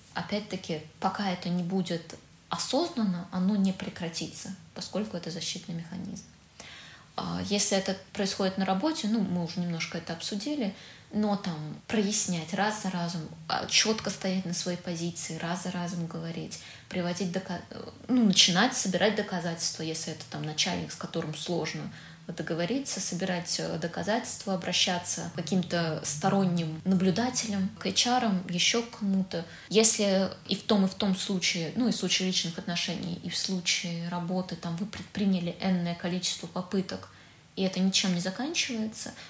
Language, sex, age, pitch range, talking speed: Russian, female, 20-39, 170-200 Hz, 135 wpm